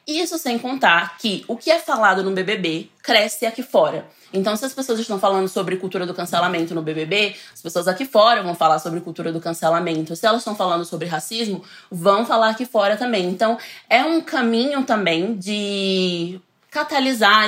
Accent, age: Brazilian, 20-39